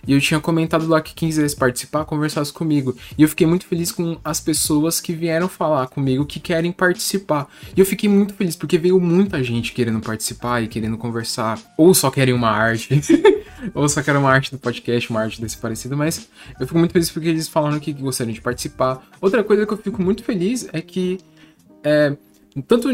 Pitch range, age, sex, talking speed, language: 125-165 Hz, 10-29, male, 205 wpm, Portuguese